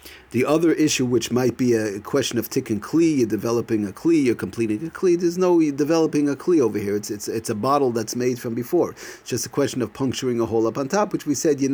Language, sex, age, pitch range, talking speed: English, male, 40-59, 110-140 Hz, 260 wpm